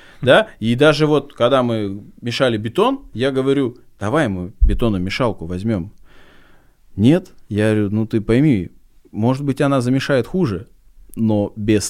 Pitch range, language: 105-140 Hz, Russian